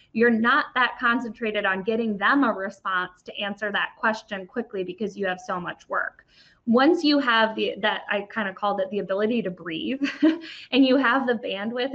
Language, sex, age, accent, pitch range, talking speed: English, female, 10-29, American, 195-245 Hz, 195 wpm